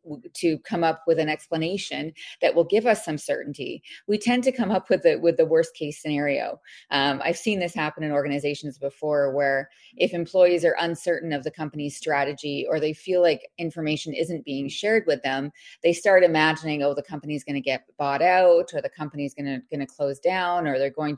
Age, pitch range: 30-49, 145-185 Hz